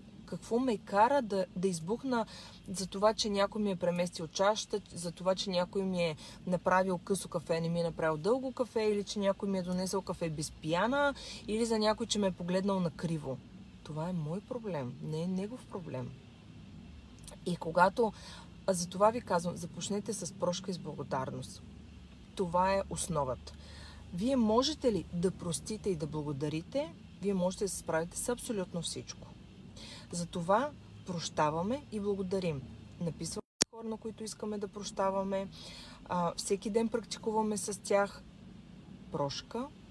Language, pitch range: Bulgarian, 170-200 Hz